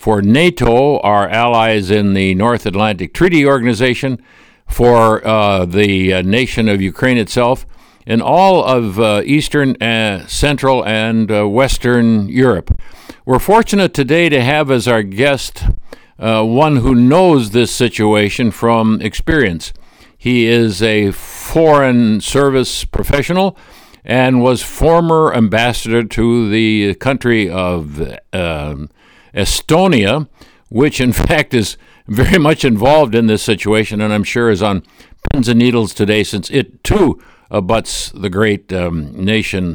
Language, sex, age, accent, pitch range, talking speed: English, male, 60-79, American, 100-125 Hz, 135 wpm